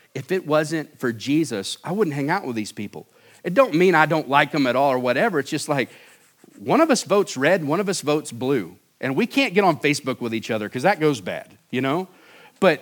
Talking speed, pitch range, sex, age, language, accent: 245 wpm, 135-180 Hz, male, 50-69, English, American